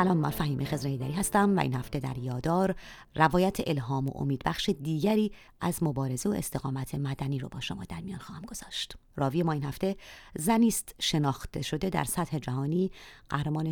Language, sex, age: Persian, female, 30-49